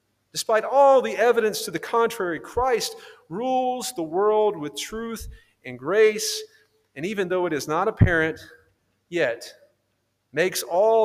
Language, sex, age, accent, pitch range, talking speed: English, male, 40-59, American, 125-210 Hz, 135 wpm